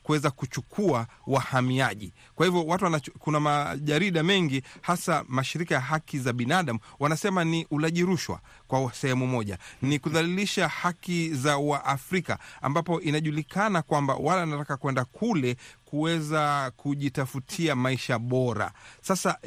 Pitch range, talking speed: 130-165 Hz, 125 wpm